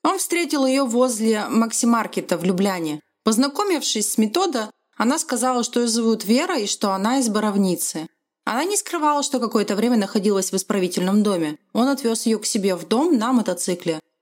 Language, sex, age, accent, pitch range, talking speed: Russian, female, 30-49, native, 190-250 Hz, 170 wpm